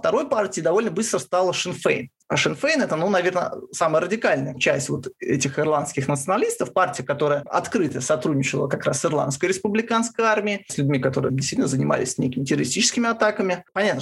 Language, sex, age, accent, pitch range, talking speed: Russian, male, 20-39, native, 145-205 Hz, 165 wpm